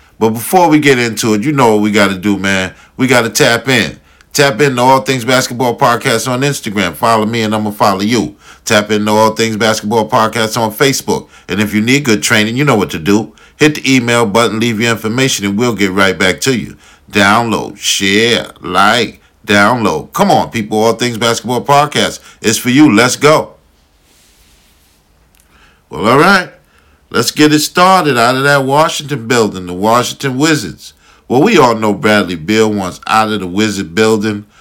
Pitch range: 105-130 Hz